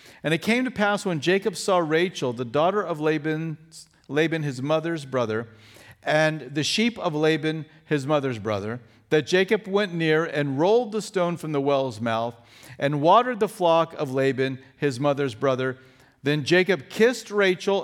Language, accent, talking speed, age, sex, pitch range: English, American, 170 wpm, 50-69, male, 130-160 Hz